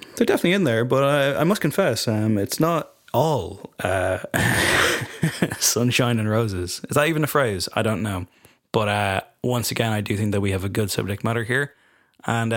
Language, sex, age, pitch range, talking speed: English, male, 20-39, 110-135 Hz, 195 wpm